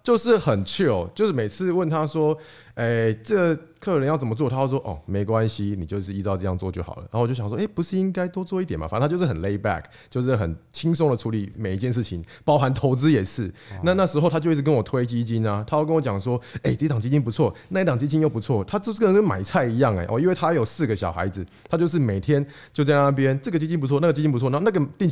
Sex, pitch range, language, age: male, 110-160 Hz, Chinese, 20-39